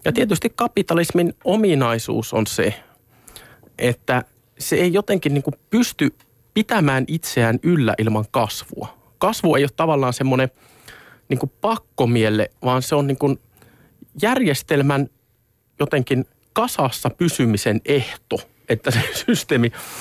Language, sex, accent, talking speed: Finnish, male, native, 110 wpm